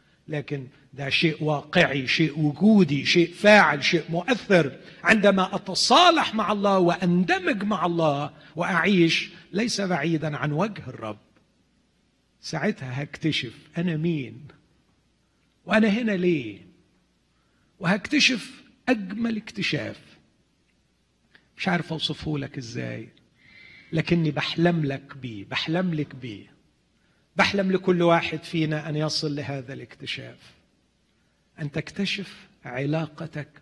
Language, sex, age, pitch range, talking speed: Arabic, male, 40-59, 150-195 Hz, 100 wpm